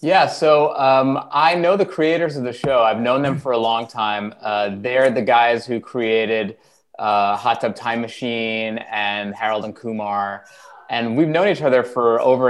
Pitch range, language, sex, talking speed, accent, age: 110-135 Hz, English, male, 185 wpm, American, 20-39